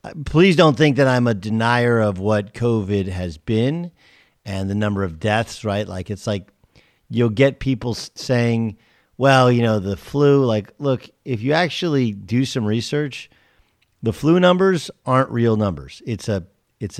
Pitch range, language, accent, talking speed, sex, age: 95-130 Hz, English, American, 165 wpm, male, 50-69